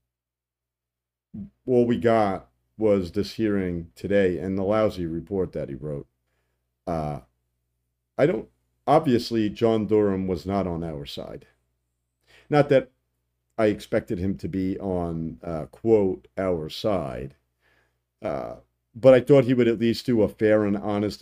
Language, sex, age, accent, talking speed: English, male, 50-69, American, 140 wpm